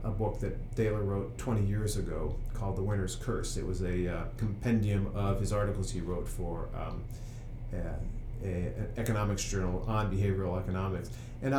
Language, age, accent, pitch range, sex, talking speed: English, 40-59, American, 95-120 Hz, male, 160 wpm